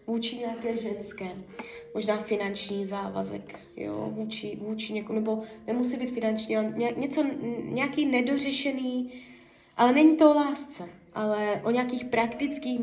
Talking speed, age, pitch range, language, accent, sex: 125 wpm, 20-39, 200-235 Hz, Czech, native, female